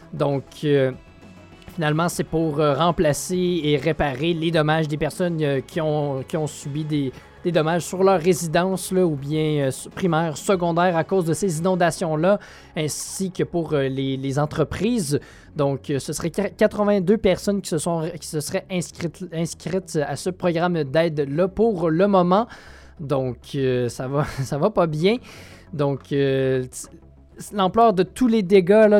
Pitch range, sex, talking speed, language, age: 145-185 Hz, male, 170 wpm, French, 20-39